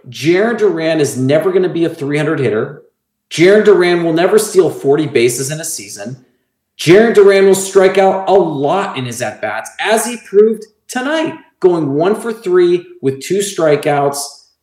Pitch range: 125-180 Hz